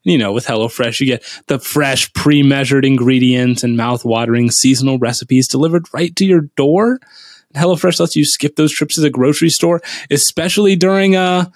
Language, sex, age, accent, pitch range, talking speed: English, male, 20-39, American, 135-185 Hz, 165 wpm